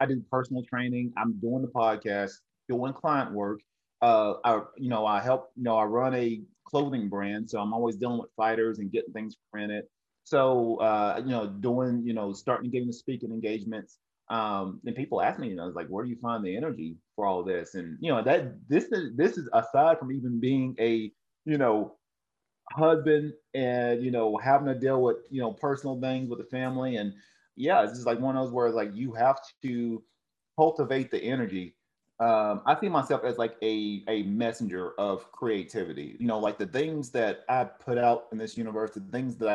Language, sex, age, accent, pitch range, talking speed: English, male, 30-49, American, 110-135 Hz, 205 wpm